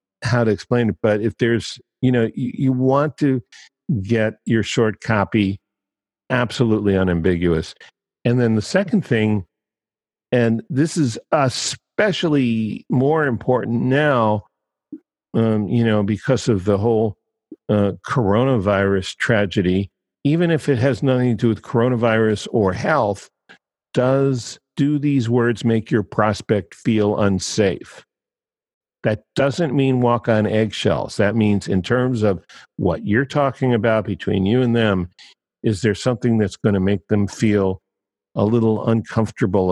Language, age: English, 50-69